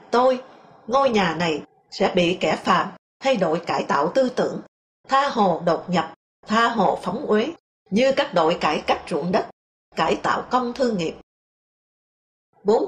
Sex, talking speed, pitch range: female, 165 wpm, 195-250 Hz